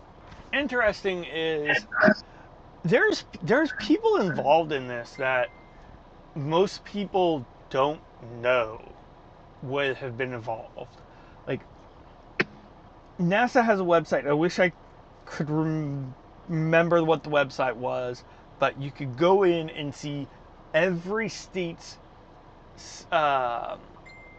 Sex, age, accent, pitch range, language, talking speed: male, 30-49, American, 140-195 Hz, English, 105 wpm